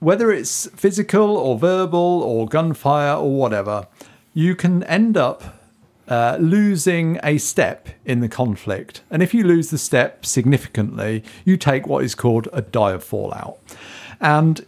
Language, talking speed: English, 150 wpm